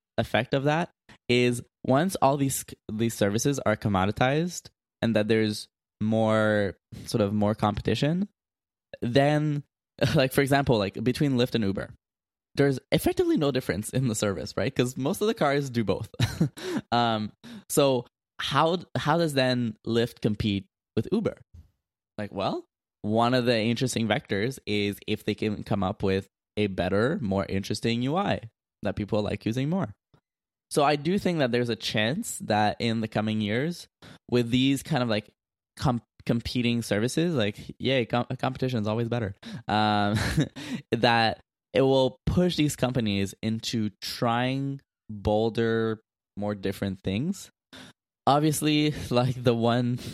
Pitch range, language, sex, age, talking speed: 105-135 Hz, English, male, 10-29, 145 wpm